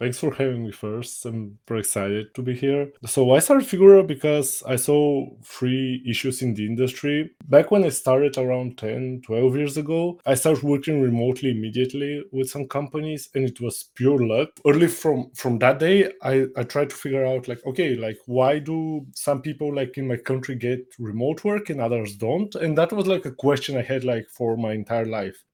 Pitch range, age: 120-145 Hz, 20-39